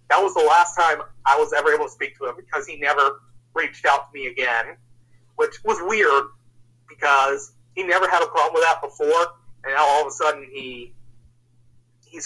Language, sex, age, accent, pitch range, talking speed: English, male, 30-49, American, 120-185 Hz, 200 wpm